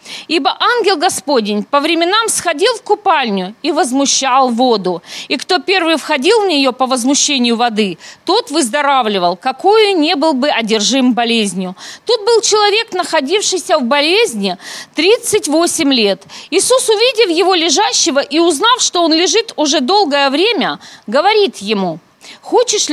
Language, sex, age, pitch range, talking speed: Russian, female, 40-59, 225-360 Hz, 135 wpm